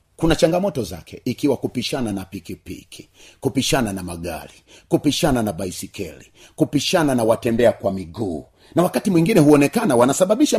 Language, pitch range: Swahili, 100-160 Hz